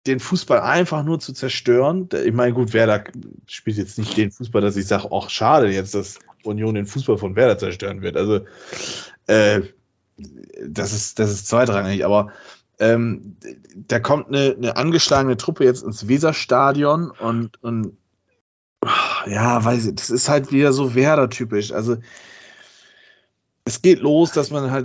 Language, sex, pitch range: German, male, 110-135 Hz